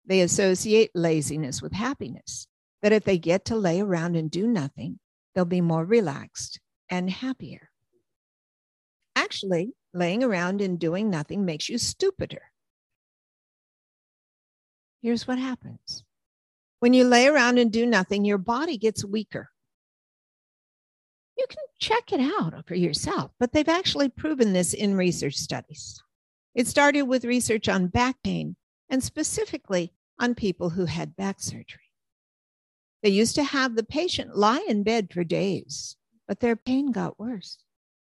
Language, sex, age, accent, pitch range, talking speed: English, female, 50-69, American, 170-240 Hz, 140 wpm